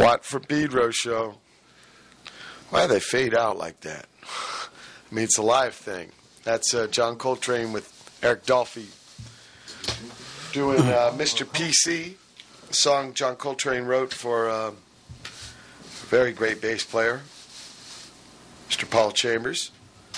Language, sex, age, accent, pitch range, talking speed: English, male, 40-59, American, 115-135 Hz, 130 wpm